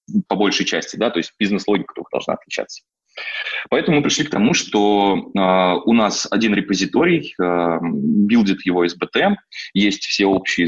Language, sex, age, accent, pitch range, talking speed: Russian, male, 20-39, native, 90-110 Hz, 155 wpm